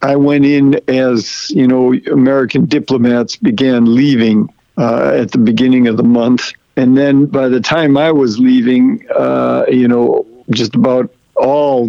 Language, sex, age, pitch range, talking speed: English, male, 60-79, 125-155 Hz, 155 wpm